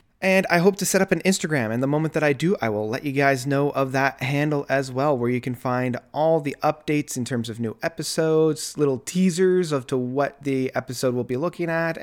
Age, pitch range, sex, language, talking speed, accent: 30-49, 115-165 Hz, male, English, 240 wpm, American